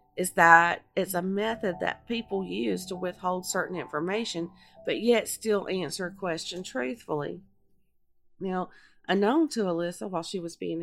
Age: 40-59